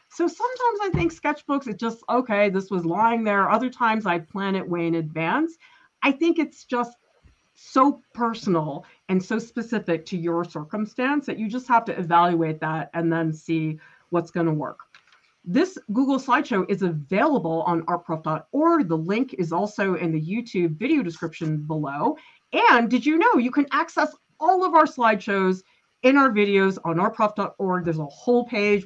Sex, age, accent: female, 40-59, American